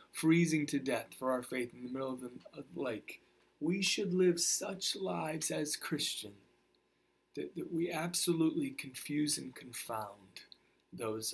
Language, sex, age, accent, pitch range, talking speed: English, male, 30-49, American, 115-175 Hz, 145 wpm